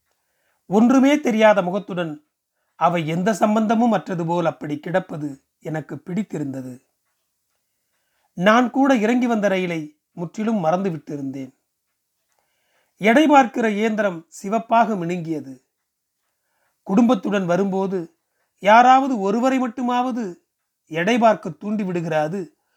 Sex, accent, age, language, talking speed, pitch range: male, native, 40-59, Tamil, 80 wpm, 165-225 Hz